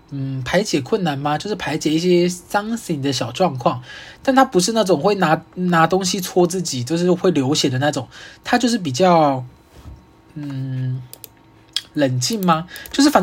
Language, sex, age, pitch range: Chinese, male, 20-39, 140-185 Hz